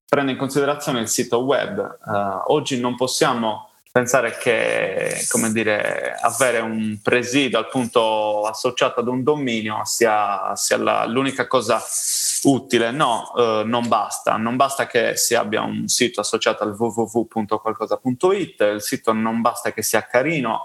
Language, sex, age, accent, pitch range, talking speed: Italian, male, 20-39, native, 110-130 Hz, 140 wpm